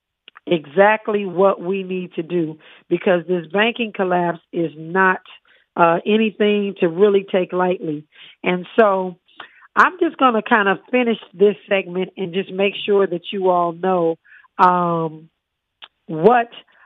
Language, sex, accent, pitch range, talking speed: English, female, American, 175-200 Hz, 140 wpm